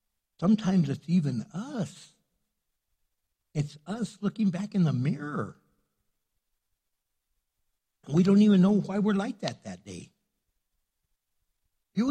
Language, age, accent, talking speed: English, 60-79, American, 110 wpm